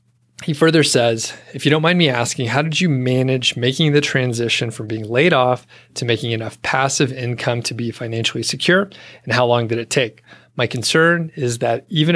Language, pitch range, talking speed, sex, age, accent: English, 115-135 Hz, 195 wpm, male, 30-49, American